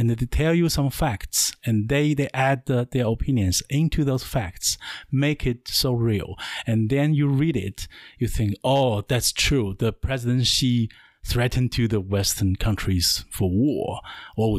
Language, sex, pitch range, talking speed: English, male, 100-130 Hz, 170 wpm